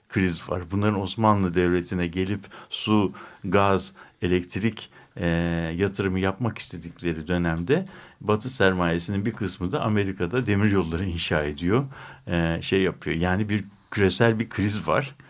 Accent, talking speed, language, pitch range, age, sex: native, 130 wpm, Turkish, 90-120 Hz, 60-79, male